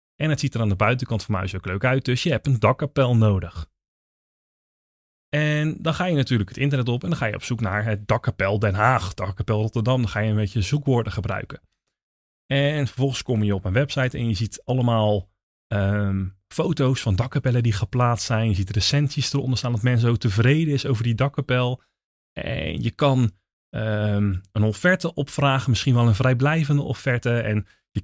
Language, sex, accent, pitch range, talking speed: Dutch, male, Dutch, 105-135 Hz, 190 wpm